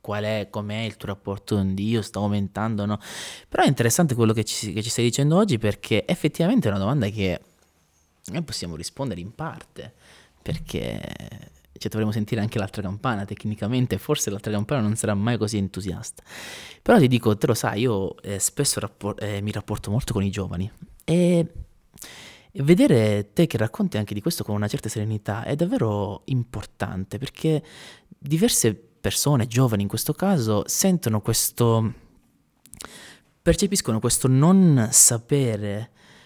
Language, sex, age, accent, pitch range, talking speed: Italian, male, 20-39, native, 105-135 Hz, 155 wpm